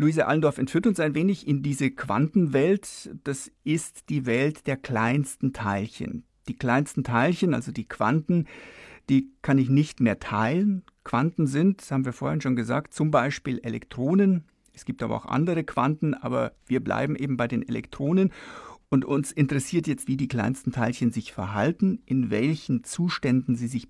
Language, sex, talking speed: German, male, 170 wpm